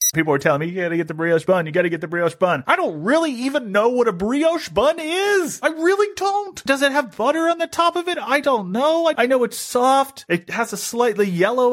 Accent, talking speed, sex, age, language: American, 270 wpm, male, 30-49, English